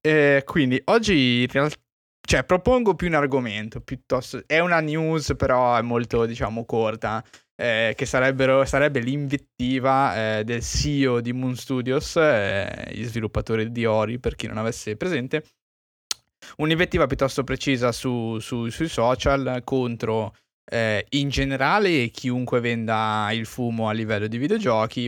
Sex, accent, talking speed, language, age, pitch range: male, native, 135 wpm, Italian, 20-39, 110-130 Hz